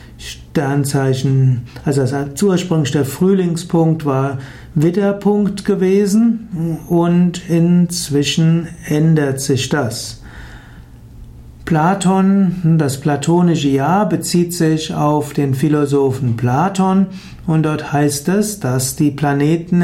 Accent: German